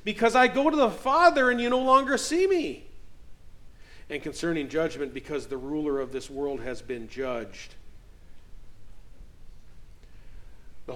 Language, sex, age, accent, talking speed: English, male, 50-69, American, 135 wpm